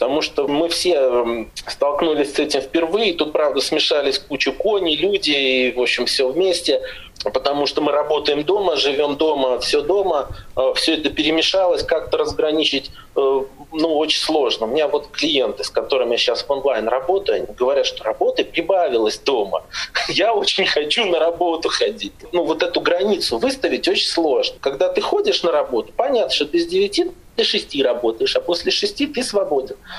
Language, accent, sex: Russian, native, male